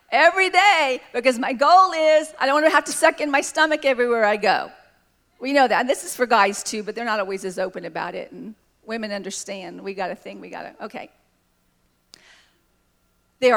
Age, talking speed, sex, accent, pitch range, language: 40-59, 210 wpm, female, American, 225-305 Hz, English